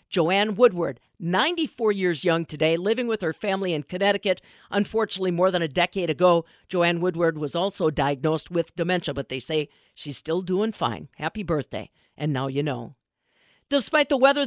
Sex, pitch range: female, 170-220 Hz